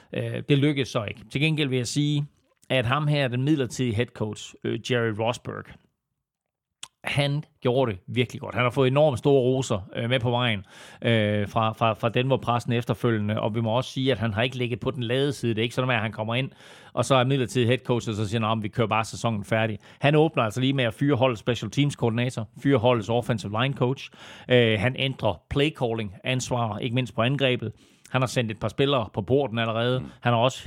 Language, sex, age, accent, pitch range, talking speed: Danish, male, 30-49, native, 115-135 Hz, 215 wpm